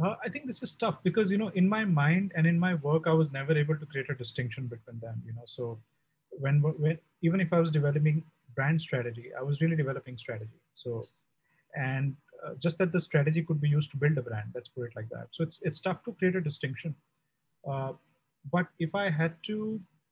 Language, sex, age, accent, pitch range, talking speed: Hindi, male, 30-49, native, 130-165 Hz, 225 wpm